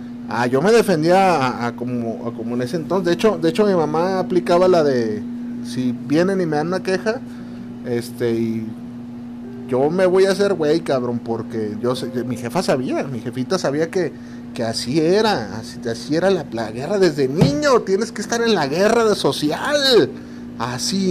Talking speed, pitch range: 190 wpm, 120-170 Hz